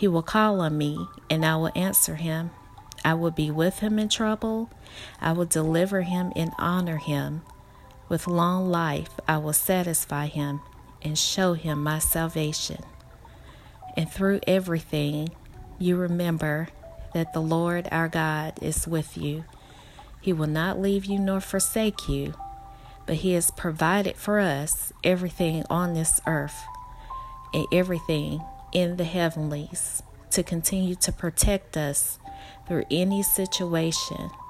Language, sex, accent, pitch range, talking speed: English, female, American, 150-180 Hz, 140 wpm